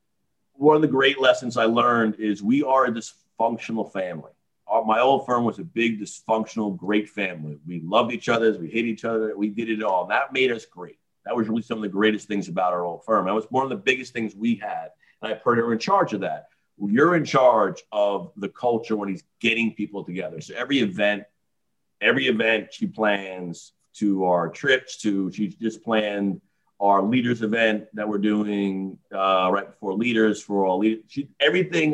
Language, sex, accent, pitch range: English, male, American, 105-130 Hz